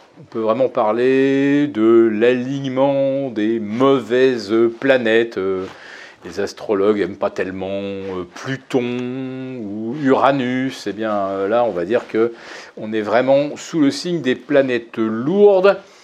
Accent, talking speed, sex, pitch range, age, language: French, 125 wpm, male, 115-145 Hz, 40-59, French